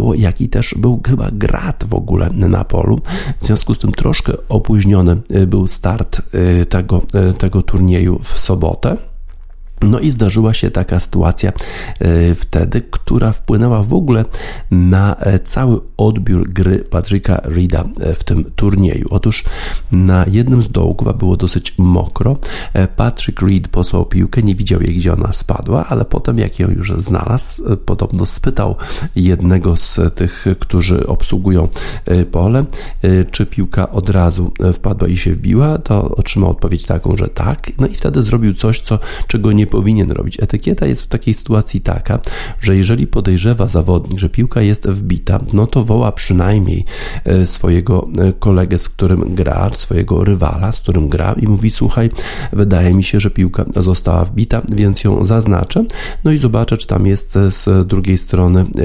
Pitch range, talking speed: 90-110 Hz, 150 wpm